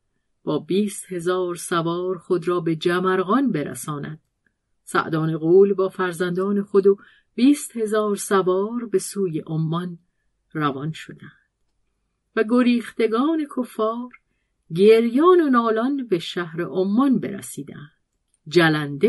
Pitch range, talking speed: 175-225 Hz, 105 wpm